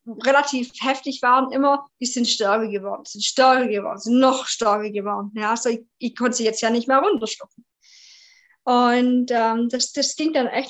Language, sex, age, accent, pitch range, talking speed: German, female, 20-39, German, 230-280 Hz, 185 wpm